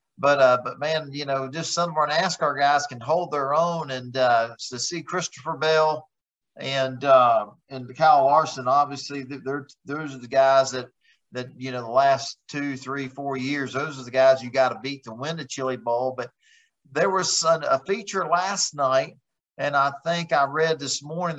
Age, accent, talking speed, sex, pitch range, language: 50-69, American, 195 wpm, male, 130-155 Hz, English